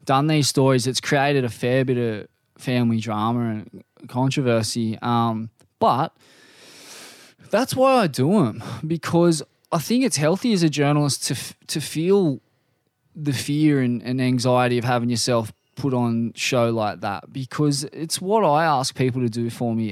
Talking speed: 165 wpm